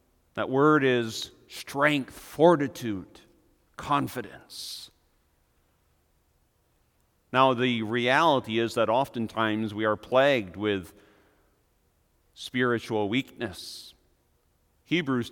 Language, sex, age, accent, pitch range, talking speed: English, male, 40-59, American, 105-145 Hz, 75 wpm